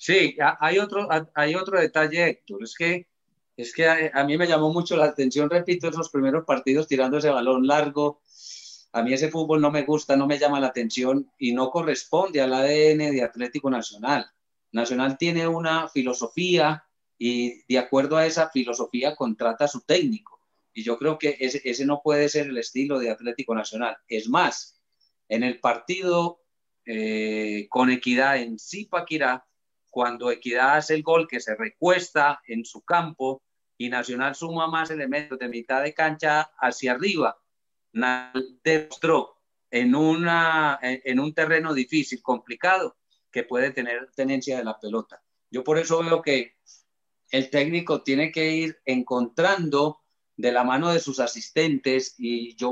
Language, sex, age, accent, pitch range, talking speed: Spanish, male, 40-59, Spanish, 125-160 Hz, 160 wpm